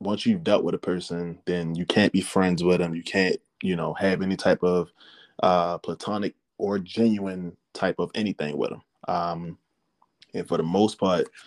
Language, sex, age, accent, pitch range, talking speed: English, male, 20-39, American, 90-105 Hz, 190 wpm